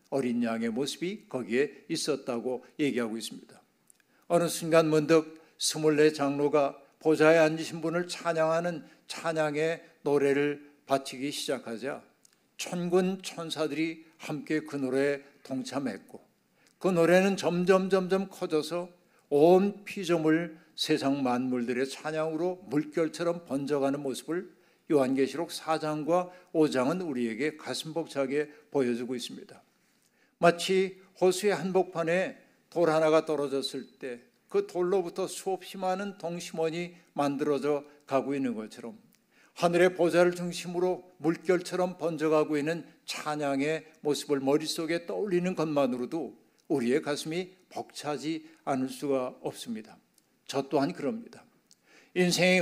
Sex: male